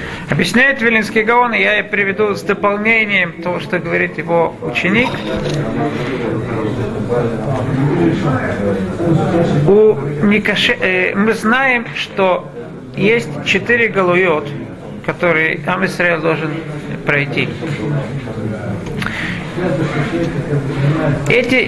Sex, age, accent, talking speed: male, 50-69, native, 65 wpm